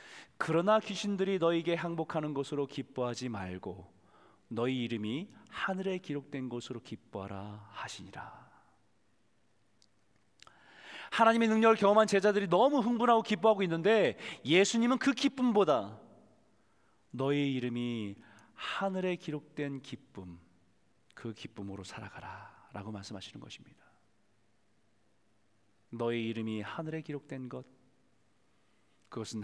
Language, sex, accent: Korean, male, native